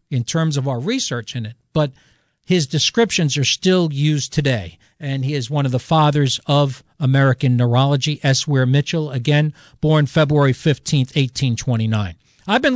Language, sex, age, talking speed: English, male, 50-69, 160 wpm